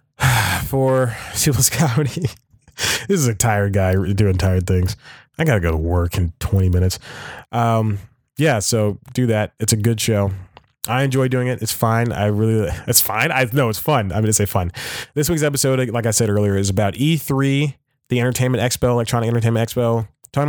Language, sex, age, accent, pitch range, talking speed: English, male, 20-39, American, 105-140 Hz, 190 wpm